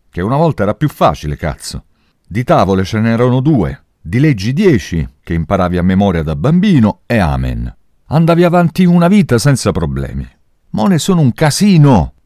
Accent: native